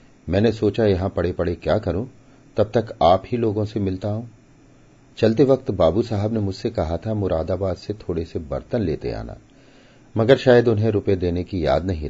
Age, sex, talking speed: 40-59, male, 190 wpm